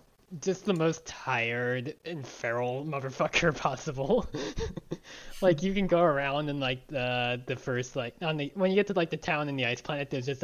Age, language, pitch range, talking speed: 20-39, English, 130-180 Hz, 185 wpm